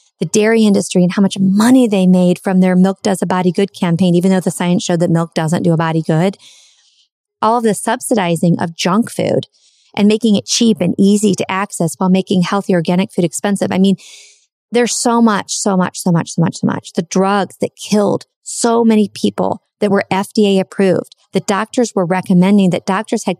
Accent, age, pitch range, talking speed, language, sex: American, 40-59, 180-215 Hz, 210 wpm, English, female